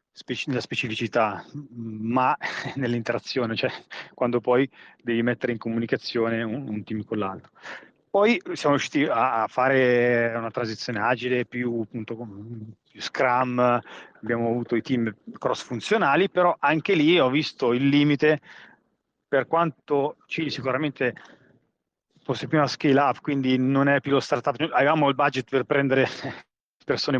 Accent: native